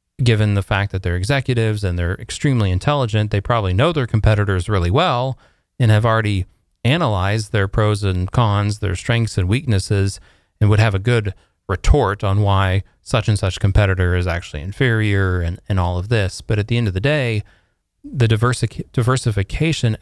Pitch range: 95-120 Hz